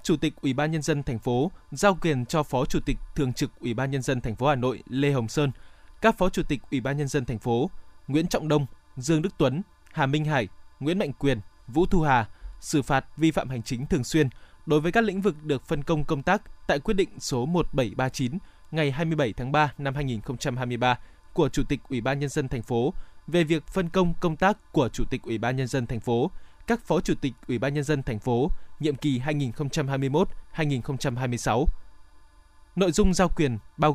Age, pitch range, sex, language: 20-39, 125-160 Hz, male, Vietnamese